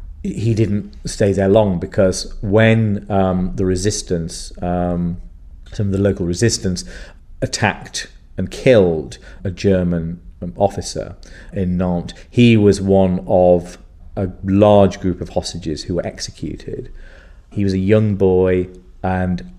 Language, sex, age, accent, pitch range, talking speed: English, male, 40-59, British, 85-105 Hz, 130 wpm